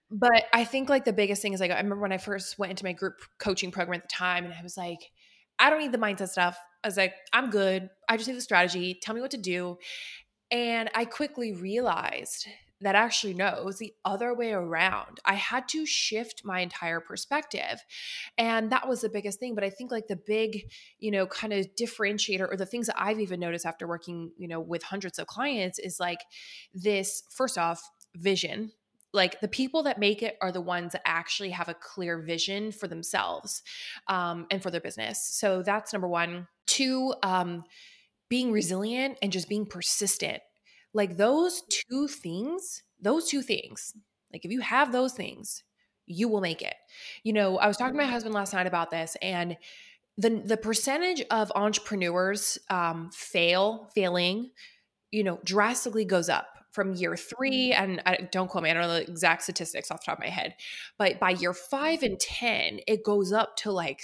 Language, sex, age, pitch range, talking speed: English, female, 20-39, 180-235 Hz, 200 wpm